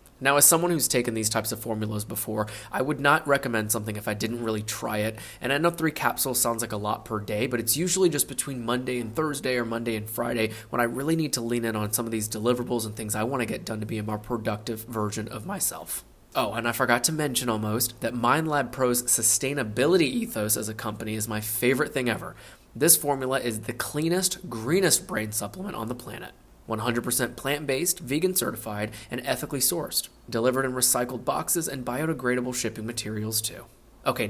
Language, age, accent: English, 20-39, American